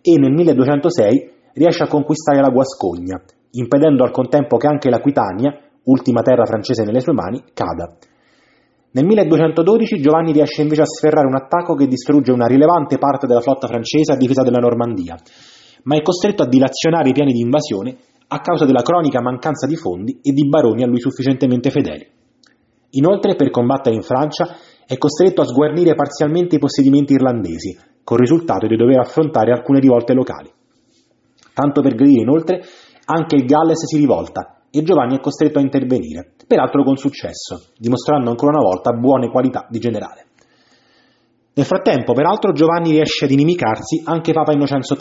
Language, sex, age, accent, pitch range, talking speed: Italian, male, 30-49, native, 125-155 Hz, 165 wpm